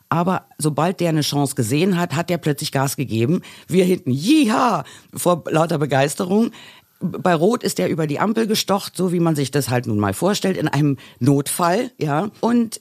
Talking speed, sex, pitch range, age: 185 wpm, female, 135-185 Hz, 50-69